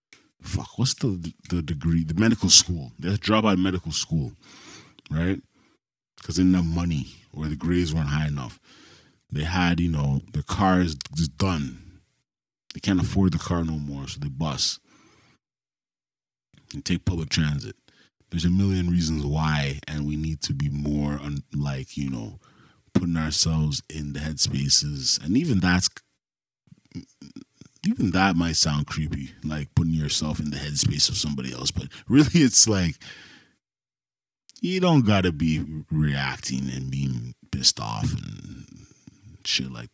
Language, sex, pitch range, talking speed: Dutch, male, 70-90 Hz, 150 wpm